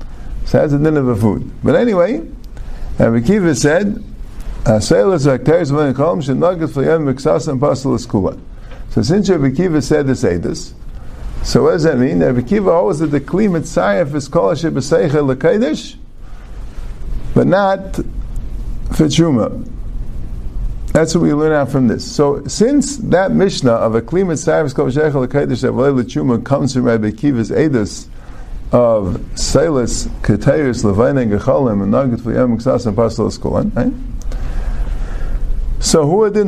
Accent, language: American, English